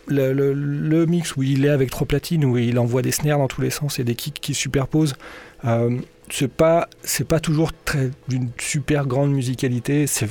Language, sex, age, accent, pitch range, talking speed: French, male, 40-59, French, 125-150 Hz, 210 wpm